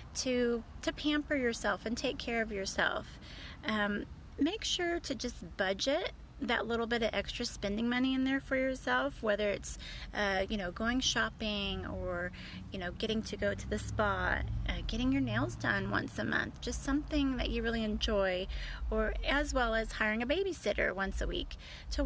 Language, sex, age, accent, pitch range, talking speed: English, female, 30-49, American, 205-265 Hz, 180 wpm